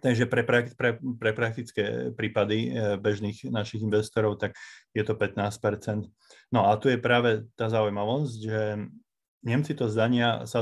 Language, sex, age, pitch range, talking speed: Slovak, male, 30-49, 105-120 Hz, 130 wpm